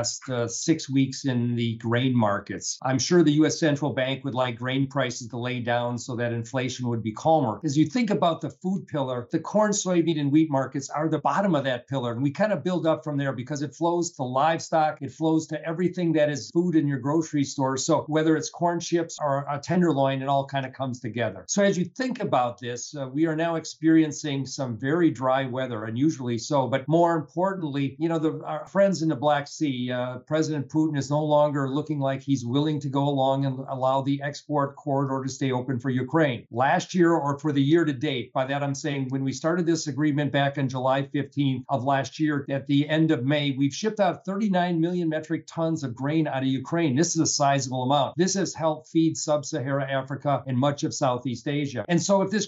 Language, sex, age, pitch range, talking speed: English, male, 50-69, 135-160 Hz, 225 wpm